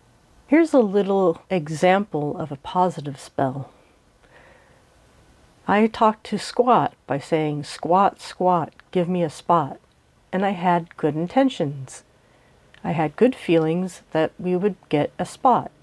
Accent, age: American, 50-69